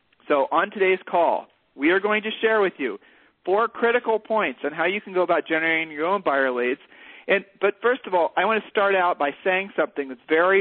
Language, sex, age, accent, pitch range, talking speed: English, male, 50-69, American, 145-220 Hz, 220 wpm